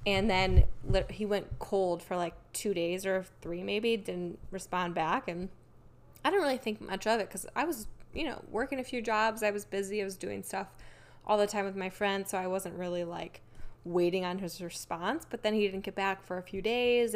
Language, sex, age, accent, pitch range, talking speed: English, female, 10-29, American, 175-200 Hz, 225 wpm